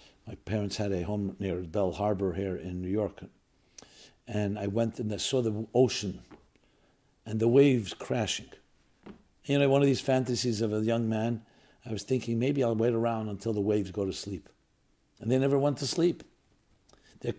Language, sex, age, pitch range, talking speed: English, male, 60-79, 105-140 Hz, 185 wpm